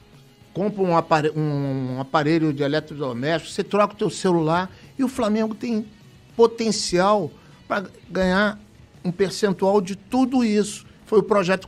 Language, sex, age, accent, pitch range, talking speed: Portuguese, male, 60-79, Brazilian, 155-210 Hz, 135 wpm